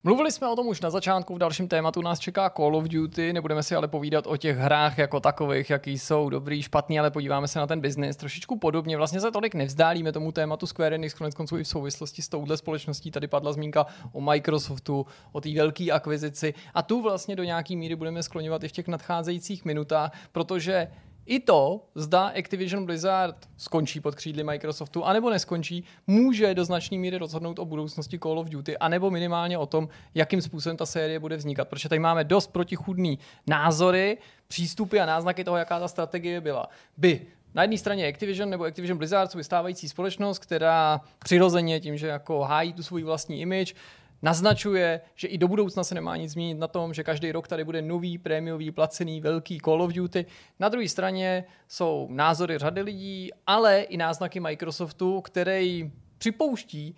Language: Czech